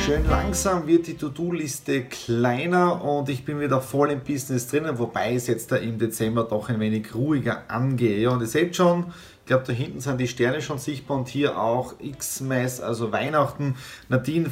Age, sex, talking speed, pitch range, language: 30-49, male, 190 wpm, 120-155 Hz, German